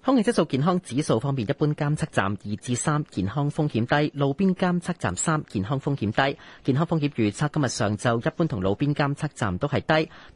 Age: 30-49